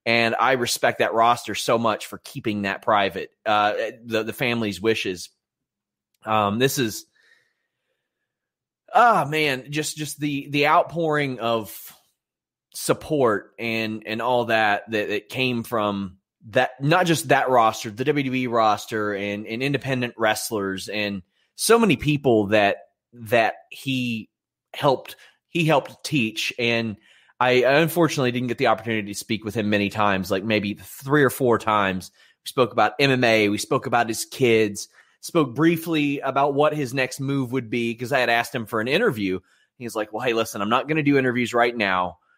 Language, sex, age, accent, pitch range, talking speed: English, male, 30-49, American, 110-140 Hz, 165 wpm